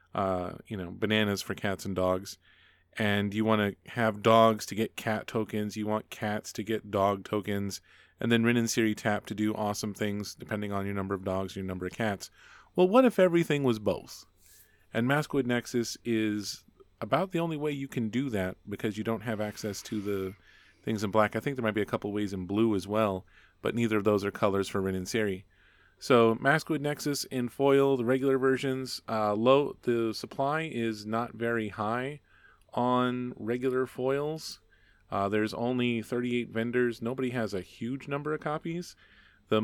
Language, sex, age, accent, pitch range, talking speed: English, male, 30-49, American, 100-120 Hz, 195 wpm